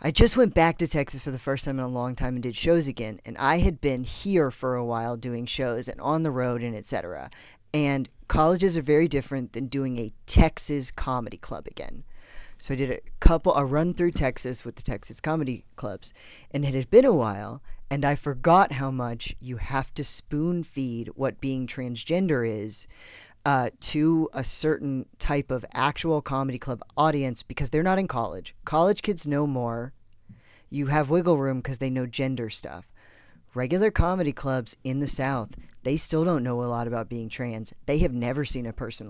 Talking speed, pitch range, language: 195 wpm, 120-145 Hz, English